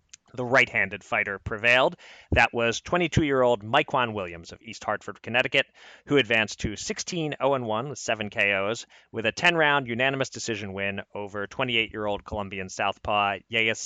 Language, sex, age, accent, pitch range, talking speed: English, male, 30-49, American, 105-140 Hz, 140 wpm